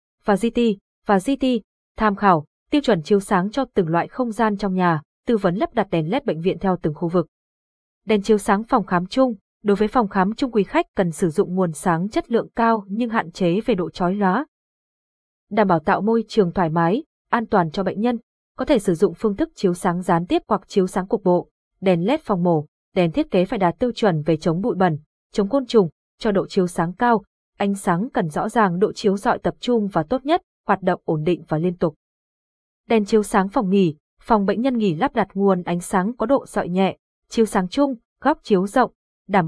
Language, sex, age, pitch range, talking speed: Vietnamese, female, 20-39, 180-230 Hz, 230 wpm